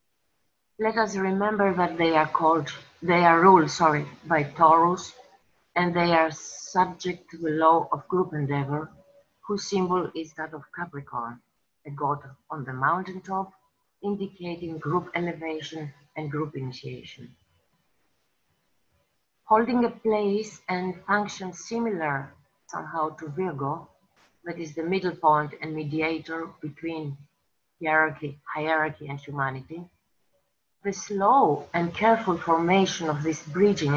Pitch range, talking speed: 155-190 Hz, 120 wpm